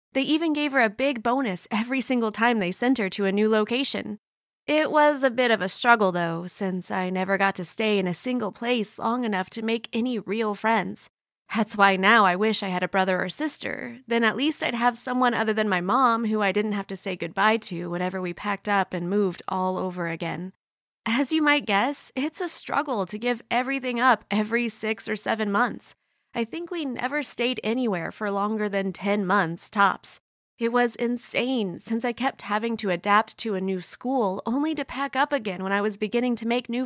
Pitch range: 195-245 Hz